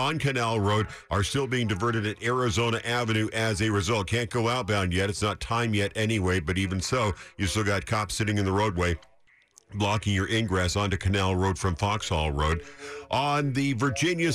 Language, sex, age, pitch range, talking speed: English, male, 50-69, 100-135 Hz, 190 wpm